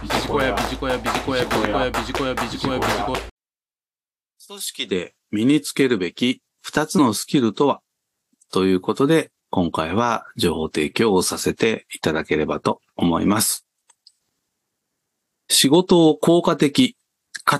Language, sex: Japanese, male